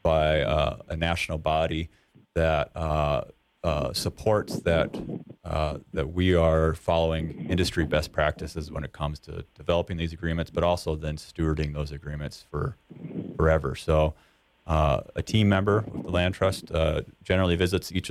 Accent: American